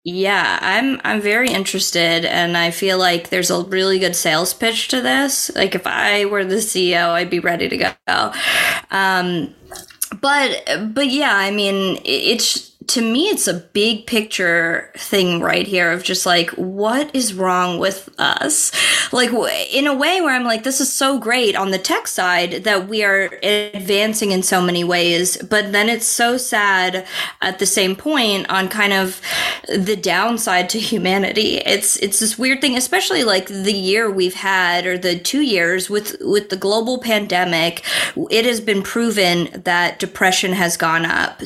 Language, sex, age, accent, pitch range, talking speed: English, female, 20-39, American, 180-220 Hz, 175 wpm